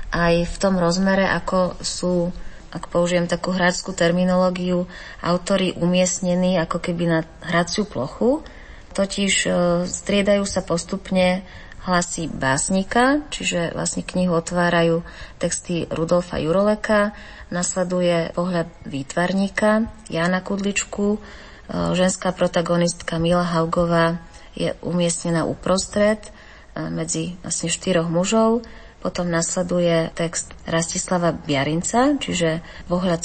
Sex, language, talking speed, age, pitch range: female, Slovak, 95 wpm, 30-49, 165-190 Hz